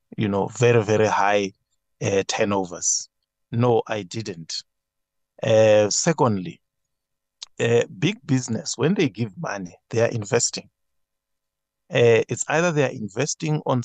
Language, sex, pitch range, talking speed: English, male, 115-145 Hz, 130 wpm